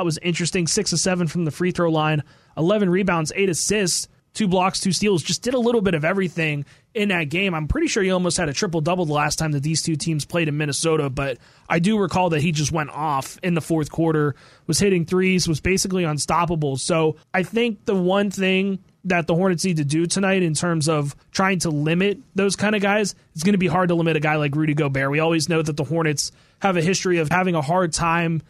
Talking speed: 240 wpm